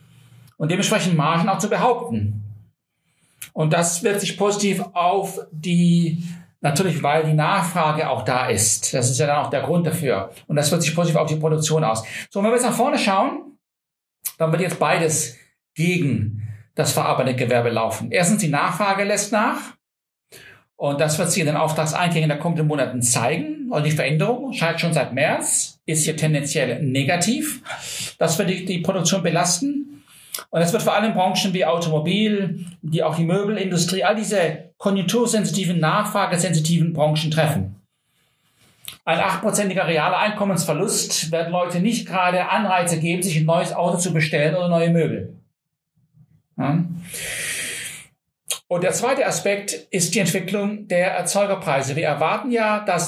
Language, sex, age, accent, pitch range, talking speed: German, male, 50-69, German, 155-195 Hz, 155 wpm